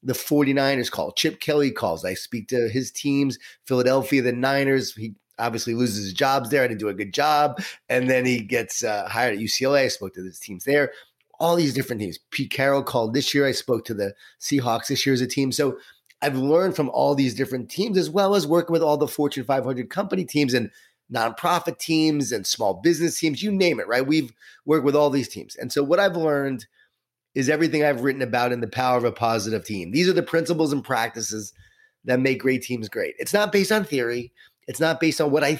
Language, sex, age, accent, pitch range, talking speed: English, male, 30-49, American, 125-150 Hz, 225 wpm